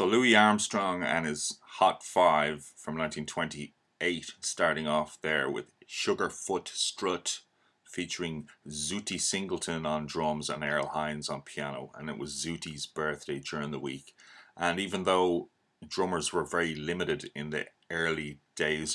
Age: 30-49